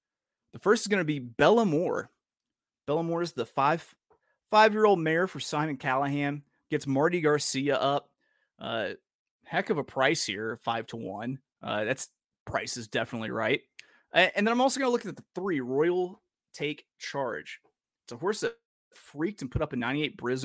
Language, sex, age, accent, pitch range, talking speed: English, male, 30-49, American, 130-220 Hz, 180 wpm